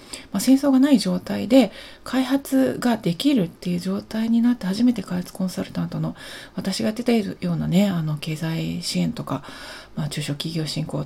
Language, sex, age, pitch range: Japanese, female, 30-49, 160-210 Hz